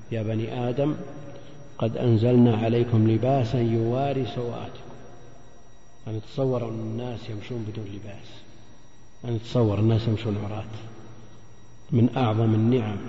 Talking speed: 105 wpm